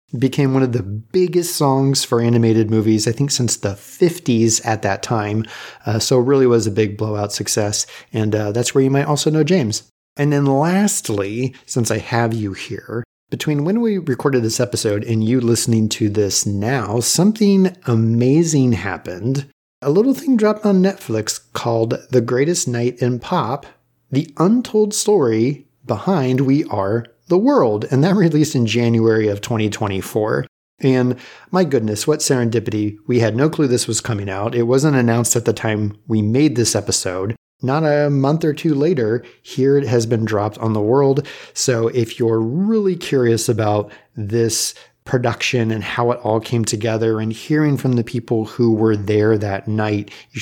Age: 30-49